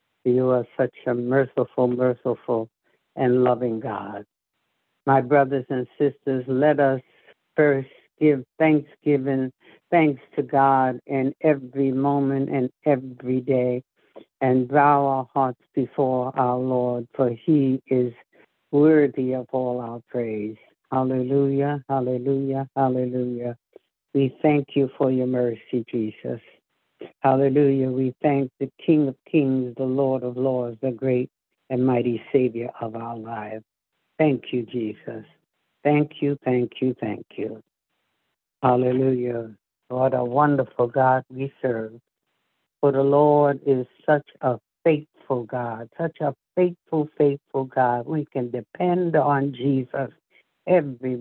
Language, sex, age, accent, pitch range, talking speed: English, female, 60-79, American, 125-140 Hz, 125 wpm